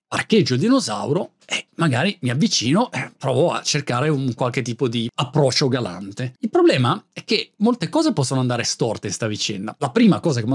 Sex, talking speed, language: male, 190 wpm, Italian